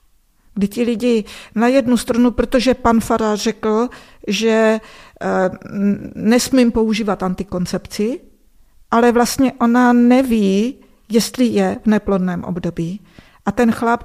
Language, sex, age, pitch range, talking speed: Czech, female, 50-69, 185-235 Hz, 110 wpm